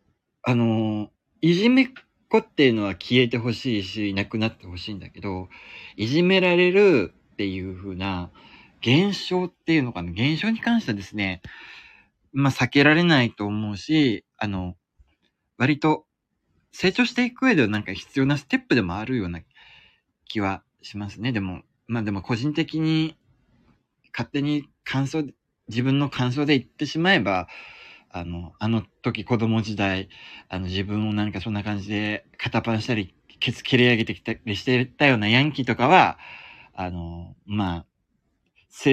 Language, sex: Japanese, male